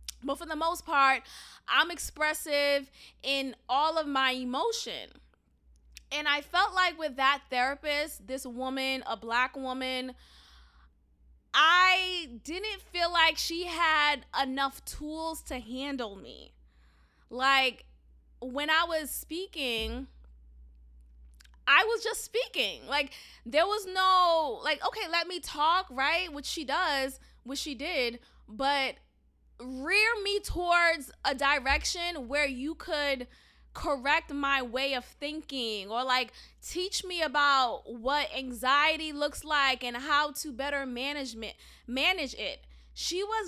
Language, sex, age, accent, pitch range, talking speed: English, female, 20-39, American, 255-320 Hz, 125 wpm